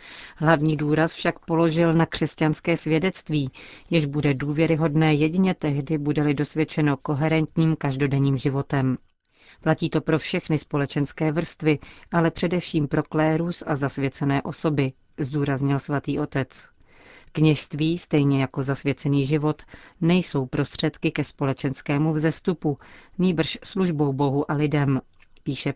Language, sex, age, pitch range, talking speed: Czech, female, 40-59, 145-165 Hz, 115 wpm